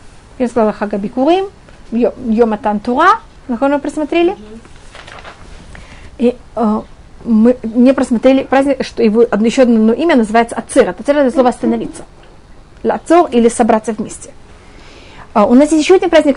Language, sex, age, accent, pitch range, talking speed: Russian, female, 30-49, native, 230-295 Hz, 130 wpm